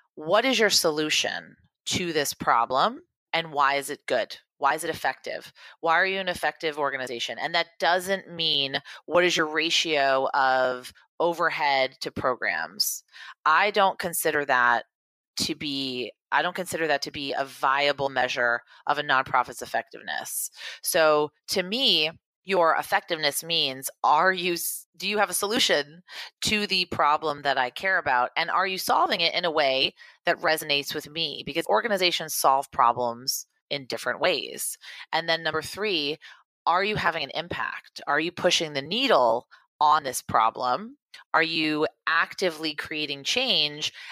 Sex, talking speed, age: female, 155 wpm, 30-49